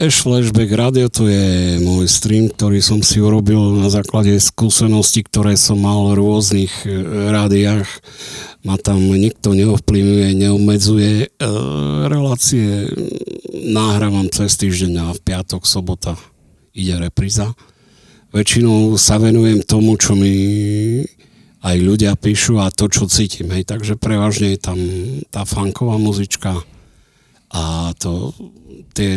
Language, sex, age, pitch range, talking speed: Slovak, male, 50-69, 95-110 Hz, 120 wpm